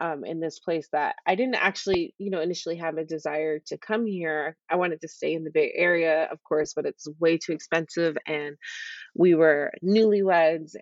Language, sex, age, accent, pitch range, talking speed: English, female, 30-49, American, 160-200 Hz, 200 wpm